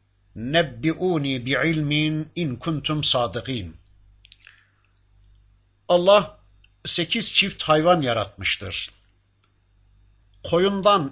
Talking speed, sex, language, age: 60 wpm, male, Turkish, 50-69